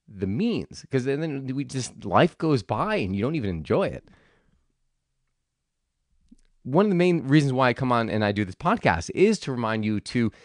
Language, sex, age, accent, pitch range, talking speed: English, male, 30-49, American, 100-160 Hz, 195 wpm